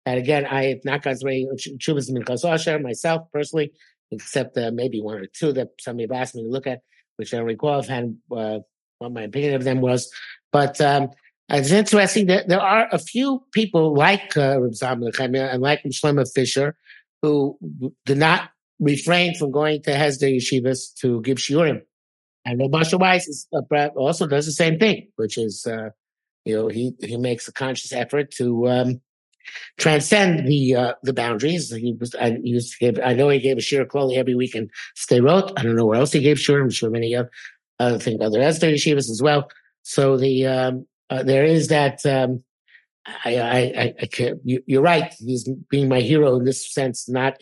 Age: 50-69